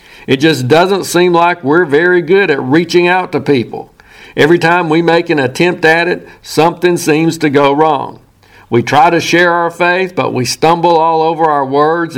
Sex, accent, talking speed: male, American, 190 wpm